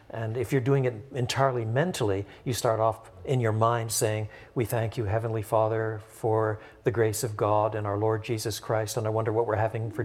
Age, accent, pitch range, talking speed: 60-79, American, 110-135 Hz, 215 wpm